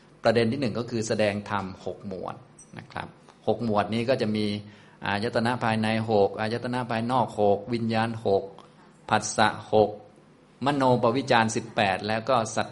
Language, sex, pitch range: Thai, male, 105-130 Hz